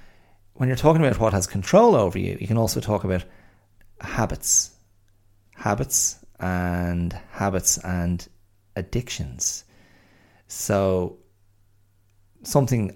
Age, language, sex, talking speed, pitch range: 30-49, English, male, 100 wpm, 90-105 Hz